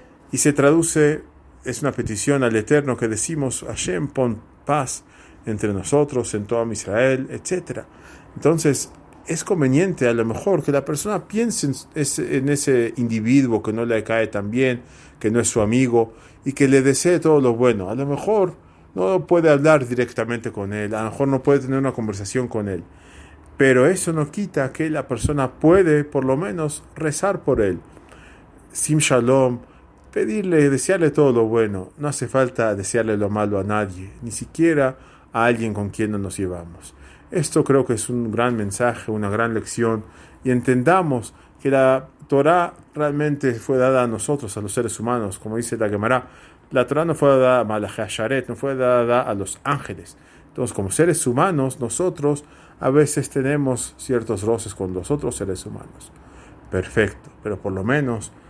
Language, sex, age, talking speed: English, male, 40-59, 175 wpm